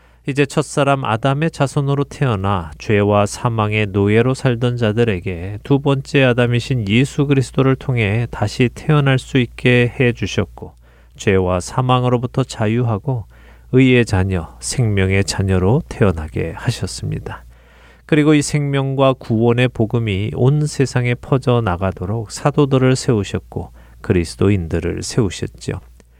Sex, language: male, Korean